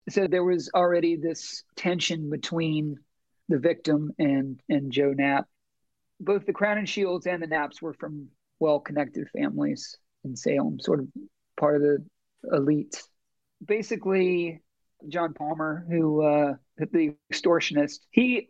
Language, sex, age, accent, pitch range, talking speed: English, male, 40-59, American, 150-180 Hz, 135 wpm